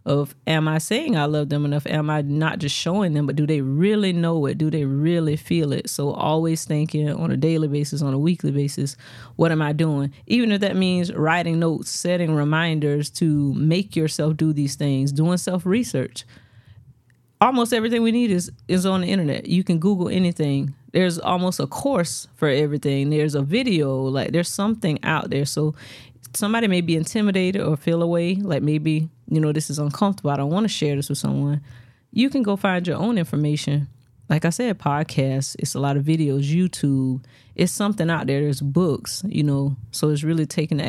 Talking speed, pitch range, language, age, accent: 200 wpm, 140-170 Hz, English, 30-49, American